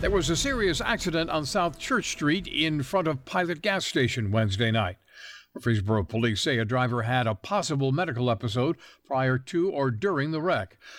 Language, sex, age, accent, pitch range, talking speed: English, male, 60-79, American, 115-140 Hz, 180 wpm